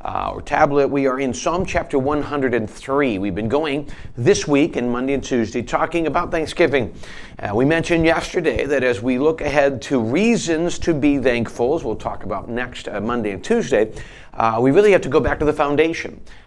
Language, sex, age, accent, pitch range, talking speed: English, male, 40-59, American, 120-155 Hz, 195 wpm